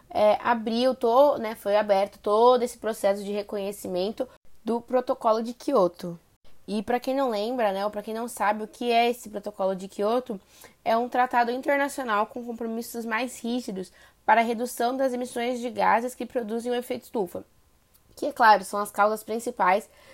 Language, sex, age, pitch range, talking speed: Portuguese, female, 10-29, 210-255 Hz, 180 wpm